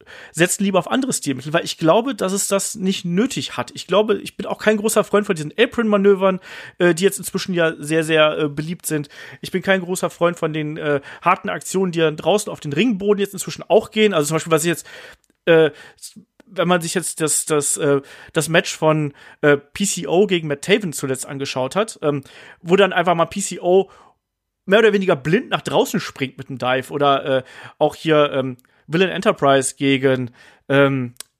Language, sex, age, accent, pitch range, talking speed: German, male, 40-59, German, 145-195 Hz, 200 wpm